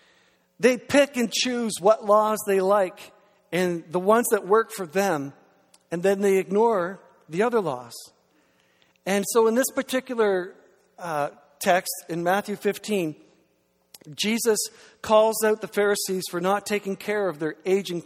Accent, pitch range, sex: American, 150-200 Hz, male